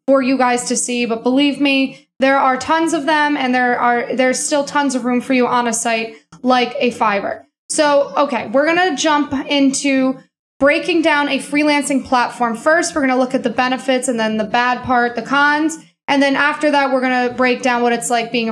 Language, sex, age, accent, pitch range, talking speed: English, female, 20-39, American, 240-285 Hz, 215 wpm